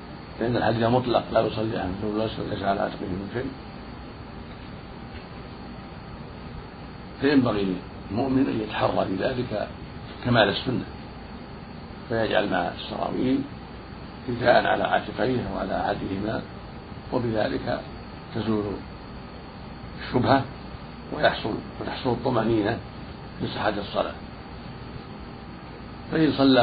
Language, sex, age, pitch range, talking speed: Arabic, male, 60-79, 100-120 Hz, 90 wpm